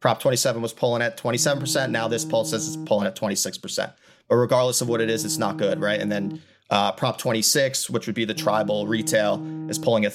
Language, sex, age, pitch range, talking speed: English, male, 30-49, 110-125 Hz, 235 wpm